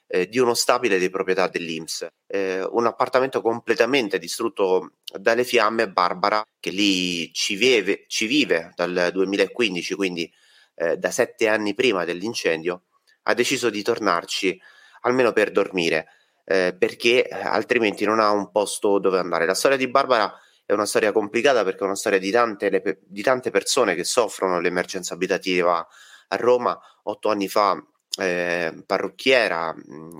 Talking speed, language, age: 140 wpm, Italian, 30-49